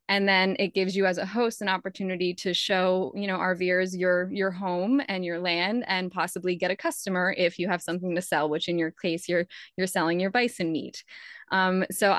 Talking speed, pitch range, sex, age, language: 215 wpm, 180-195 Hz, female, 20-39, English